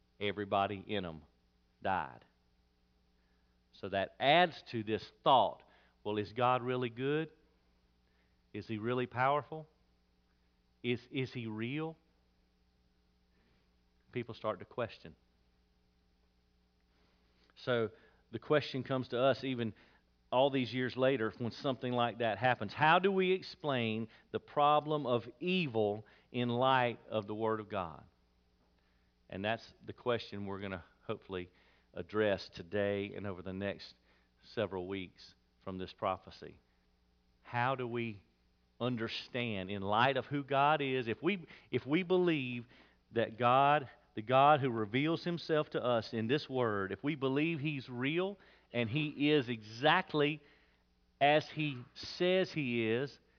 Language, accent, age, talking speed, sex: English, American, 50-69, 135 wpm, male